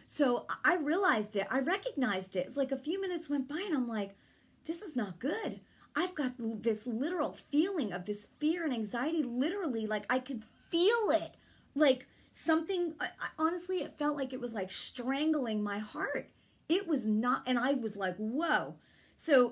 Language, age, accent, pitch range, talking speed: English, 40-59, American, 190-265 Hz, 180 wpm